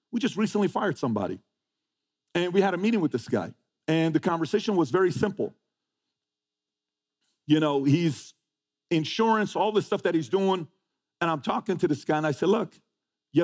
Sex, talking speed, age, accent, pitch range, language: male, 180 wpm, 50-69, American, 110-170 Hz, English